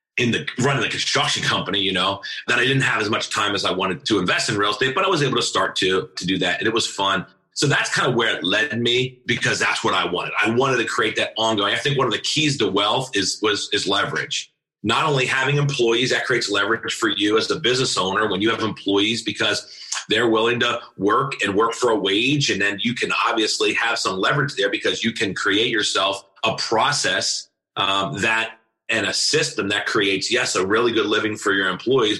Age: 30-49